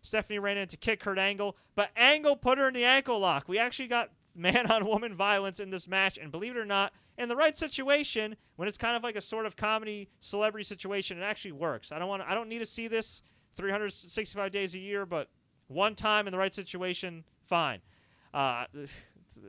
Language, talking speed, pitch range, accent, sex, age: English, 210 wpm, 170-215 Hz, American, male, 30-49